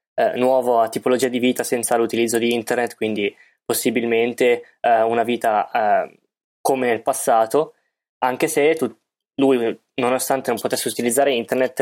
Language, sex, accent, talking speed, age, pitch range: Italian, male, native, 130 wpm, 20-39, 115-145 Hz